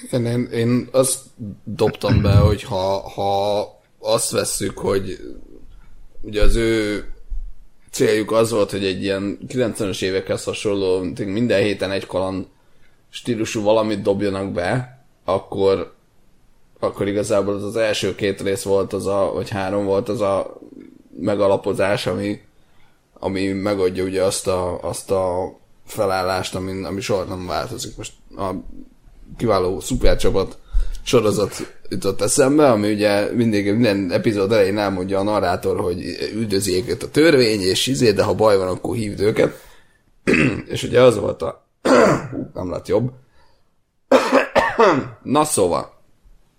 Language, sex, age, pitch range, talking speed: Hungarian, male, 20-39, 95-110 Hz, 135 wpm